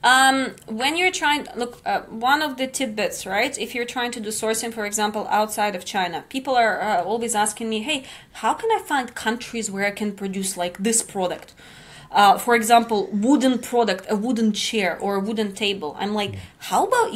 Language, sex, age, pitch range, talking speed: English, female, 20-39, 210-255 Hz, 200 wpm